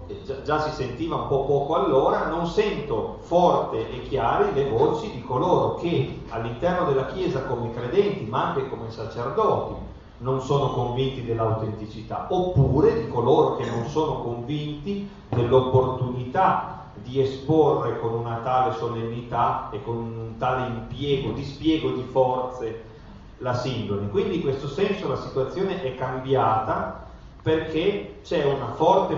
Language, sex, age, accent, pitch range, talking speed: Italian, male, 40-59, native, 115-140 Hz, 135 wpm